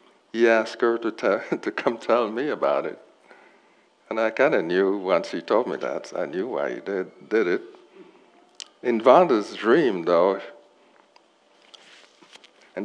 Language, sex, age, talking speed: English, male, 60-79, 155 wpm